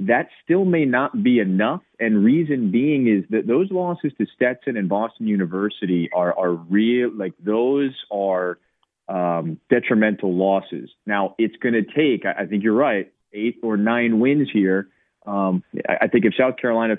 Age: 30-49